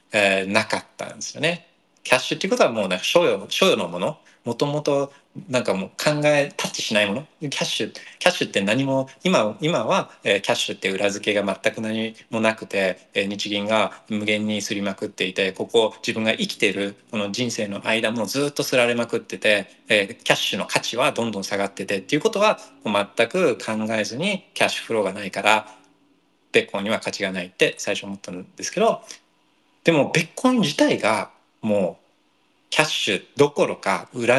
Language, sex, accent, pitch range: Japanese, male, native, 100-150 Hz